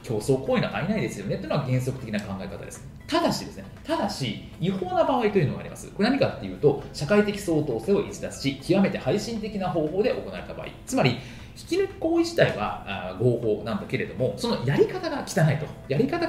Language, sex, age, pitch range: Japanese, male, 30-49, 130-210 Hz